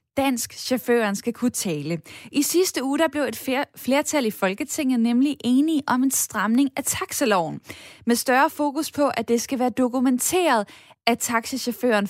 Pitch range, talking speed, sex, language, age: 205-275 Hz, 160 wpm, female, Danish, 10-29